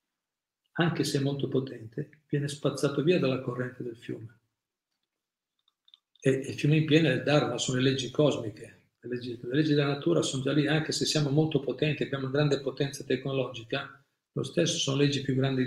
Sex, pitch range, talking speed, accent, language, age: male, 130-155 Hz, 180 wpm, native, Italian, 50-69